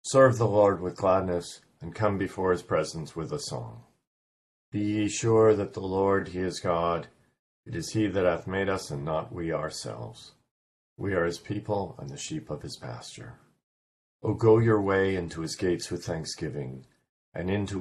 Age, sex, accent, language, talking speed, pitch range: 50-69, male, American, English, 180 wpm, 70-95 Hz